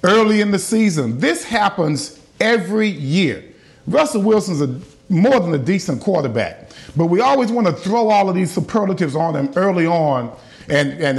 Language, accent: English, American